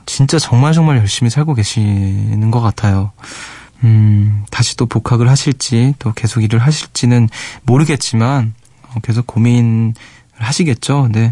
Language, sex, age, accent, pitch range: Korean, male, 20-39, native, 110-135 Hz